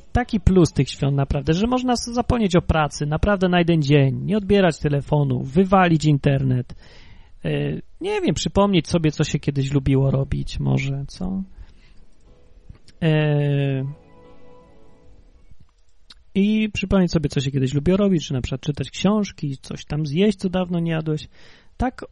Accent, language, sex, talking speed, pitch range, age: native, Polish, male, 140 wpm, 130-175 Hz, 30-49